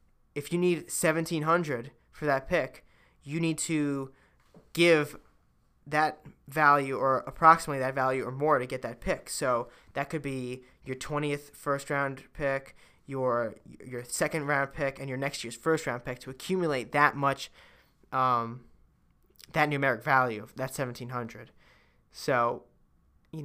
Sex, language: male, English